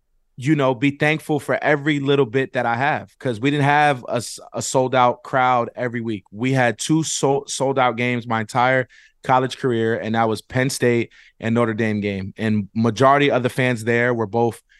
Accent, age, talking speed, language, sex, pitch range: American, 20-39, 200 wpm, English, male, 115-130 Hz